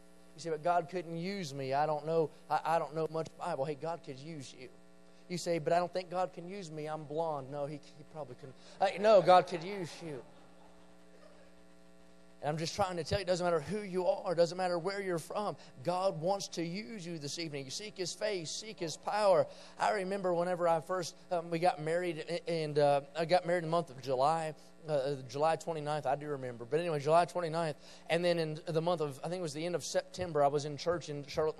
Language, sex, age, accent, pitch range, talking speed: English, male, 30-49, American, 145-175 Hz, 240 wpm